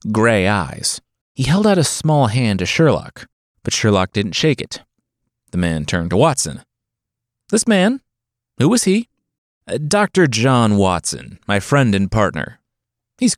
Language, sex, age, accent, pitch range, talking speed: English, male, 30-49, American, 100-145 Hz, 150 wpm